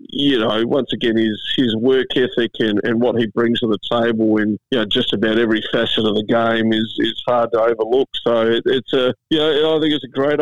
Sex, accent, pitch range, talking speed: male, Australian, 115-145 Hz, 250 wpm